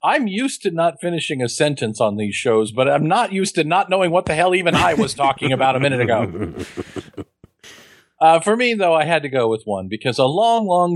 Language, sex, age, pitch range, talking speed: English, male, 40-59, 100-155 Hz, 230 wpm